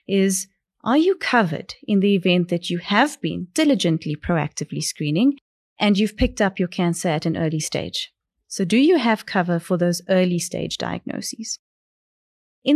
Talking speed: 165 wpm